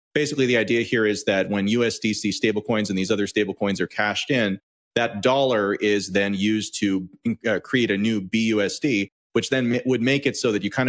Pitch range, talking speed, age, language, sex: 100-115 Hz, 200 wpm, 30-49, English, male